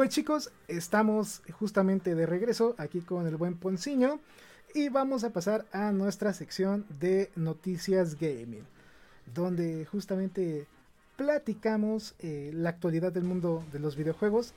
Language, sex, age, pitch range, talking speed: Spanish, male, 30-49, 170-220 Hz, 130 wpm